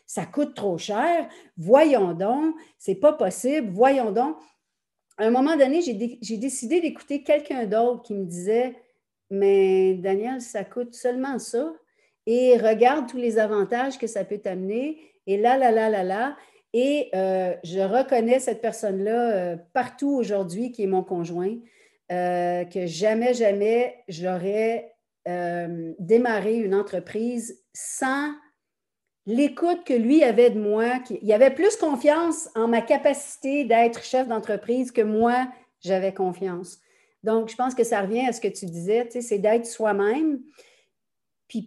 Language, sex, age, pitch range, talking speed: French, female, 50-69, 205-270 Hz, 145 wpm